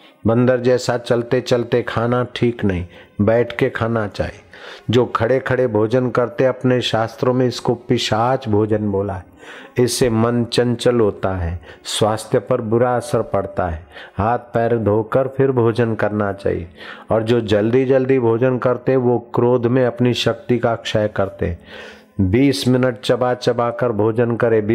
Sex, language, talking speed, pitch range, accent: male, Hindi, 125 wpm, 105-130 Hz, native